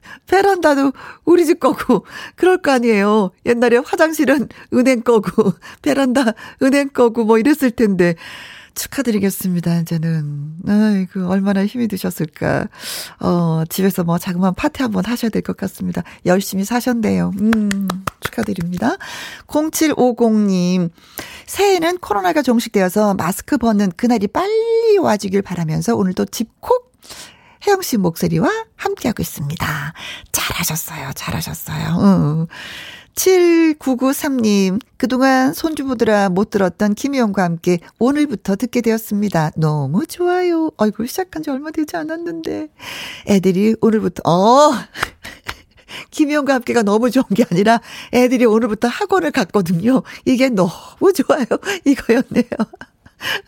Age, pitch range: 40-59, 190-275 Hz